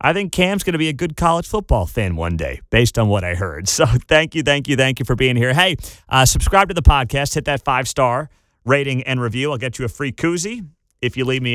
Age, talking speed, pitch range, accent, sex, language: 30-49, 260 wpm, 115-150 Hz, American, male, English